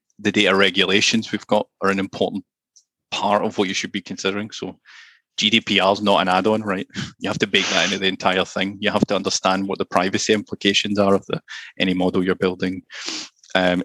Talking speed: 205 wpm